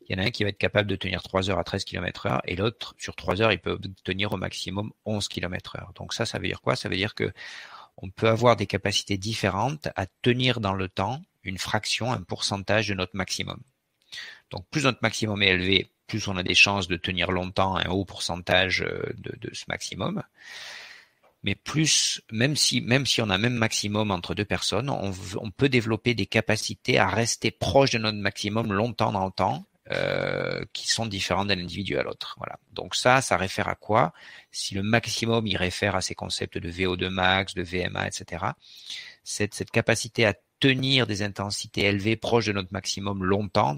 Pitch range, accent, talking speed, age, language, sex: 95-115 Hz, French, 205 wpm, 40-59, French, male